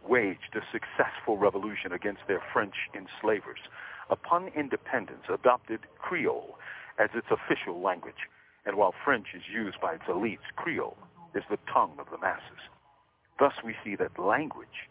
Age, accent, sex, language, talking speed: 50-69, American, male, English, 145 wpm